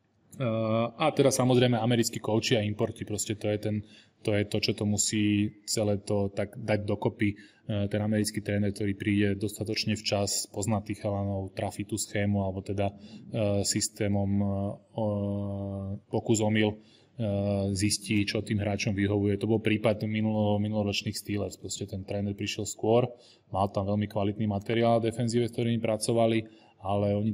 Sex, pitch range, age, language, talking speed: male, 100-110 Hz, 20-39, Slovak, 145 wpm